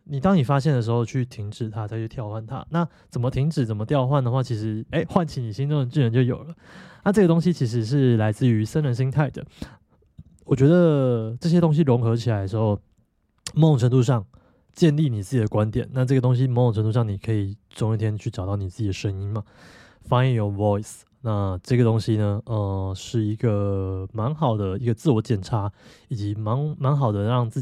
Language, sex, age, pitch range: Chinese, male, 20-39, 105-140 Hz